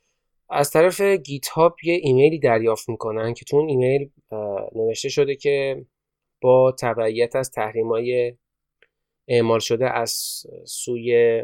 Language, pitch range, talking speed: Persian, 115-155 Hz, 115 wpm